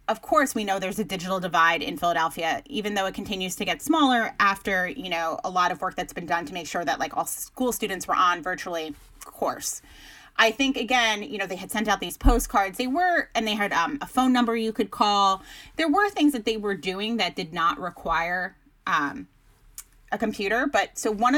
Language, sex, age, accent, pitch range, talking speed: English, female, 30-49, American, 185-230 Hz, 220 wpm